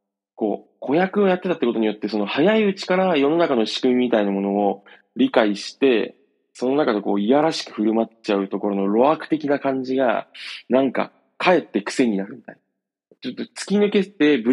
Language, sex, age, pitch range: Japanese, male, 20-39, 105-165 Hz